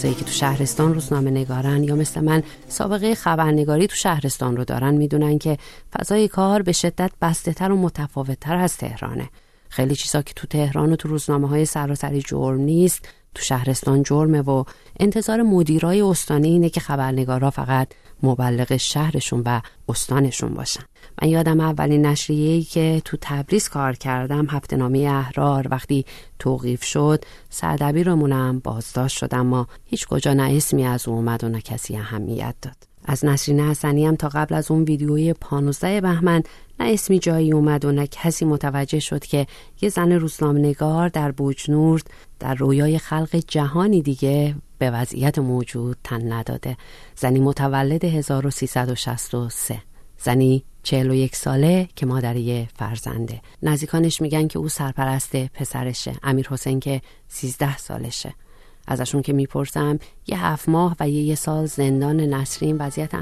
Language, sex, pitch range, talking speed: Persian, female, 130-155 Hz, 145 wpm